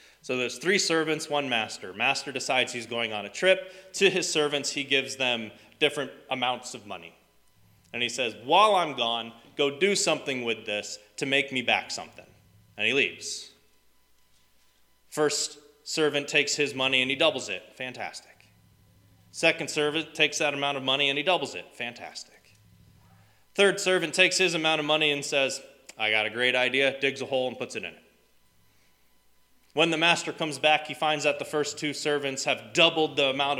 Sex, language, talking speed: male, English, 180 wpm